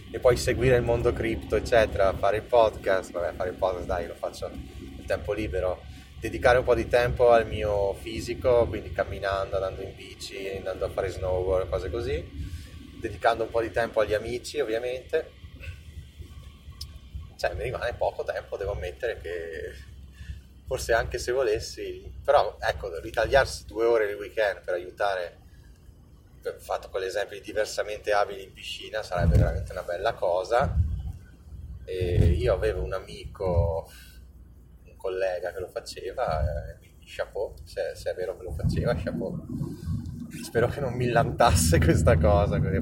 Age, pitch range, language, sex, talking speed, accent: 30-49, 85-115 Hz, Italian, male, 155 wpm, native